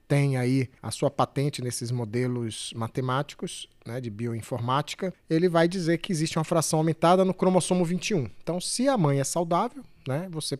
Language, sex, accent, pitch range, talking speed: Portuguese, male, Brazilian, 130-170 Hz, 170 wpm